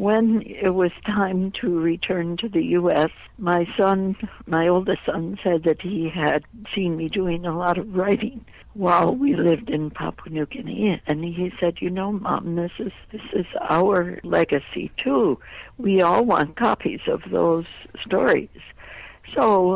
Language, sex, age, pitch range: English, female, 60-79, 155-190 Hz